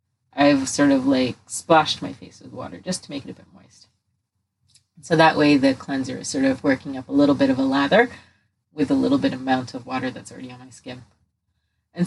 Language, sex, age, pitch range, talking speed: English, female, 30-49, 135-180 Hz, 225 wpm